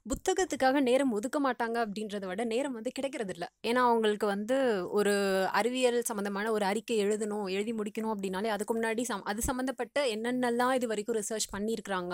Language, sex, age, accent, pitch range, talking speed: Tamil, female, 20-39, native, 200-260 Hz, 150 wpm